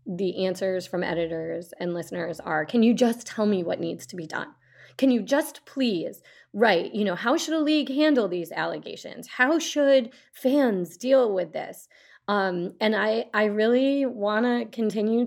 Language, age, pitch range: English, 20-39, 175-245 Hz